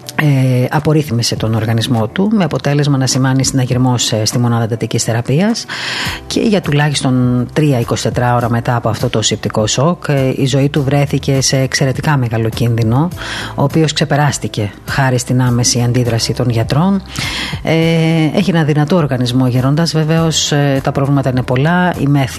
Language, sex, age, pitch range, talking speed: Greek, female, 30-49, 125-150 Hz, 140 wpm